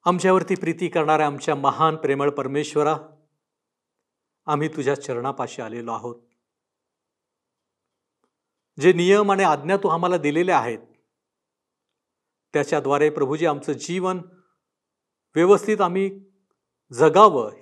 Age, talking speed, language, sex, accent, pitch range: 50-69, 90 wpm, Marathi, male, native, 140-180 Hz